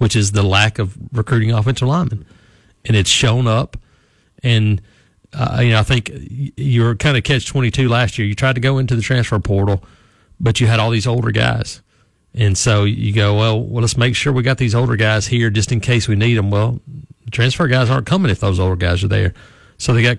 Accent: American